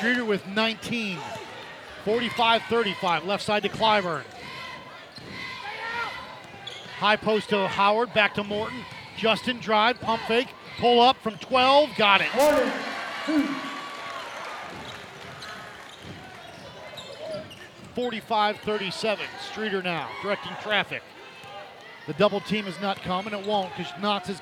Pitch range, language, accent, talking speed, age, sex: 200-270 Hz, English, American, 105 wpm, 40-59, male